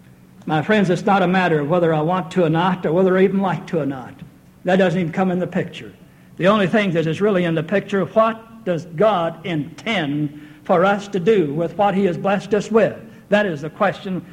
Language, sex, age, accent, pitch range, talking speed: English, male, 60-79, American, 170-215 Hz, 240 wpm